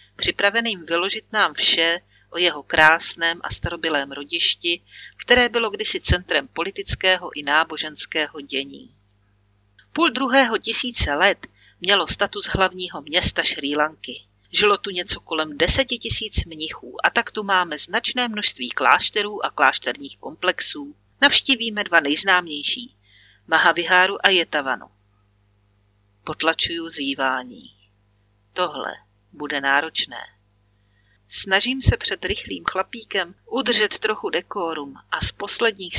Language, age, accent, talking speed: Czech, 40-59, native, 110 wpm